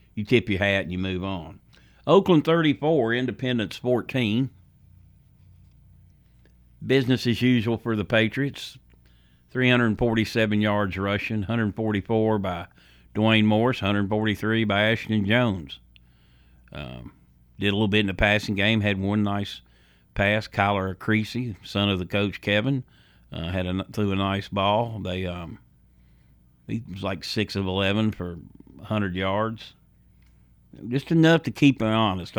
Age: 50-69